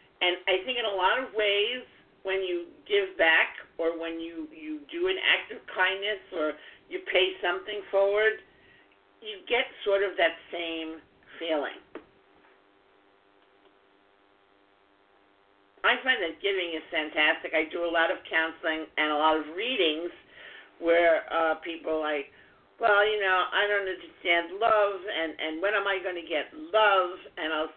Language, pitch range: English, 165-260 Hz